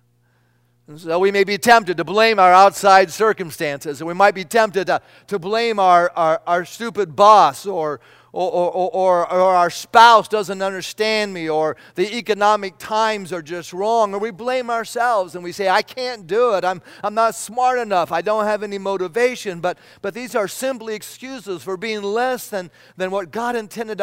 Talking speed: 190 wpm